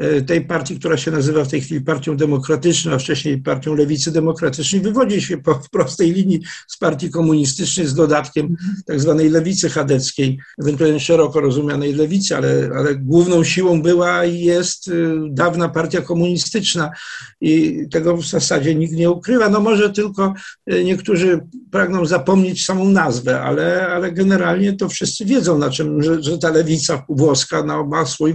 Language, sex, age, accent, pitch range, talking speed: Polish, male, 50-69, native, 150-180 Hz, 155 wpm